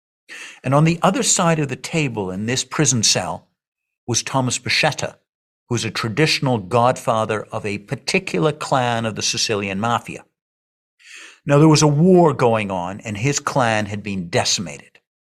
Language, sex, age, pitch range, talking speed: English, male, 50-69, 110-145 Hz, 160 wpm